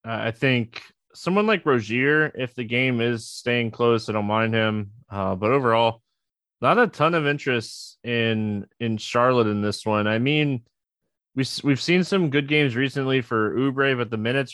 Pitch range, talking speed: 110-130 Hz, 180 wpm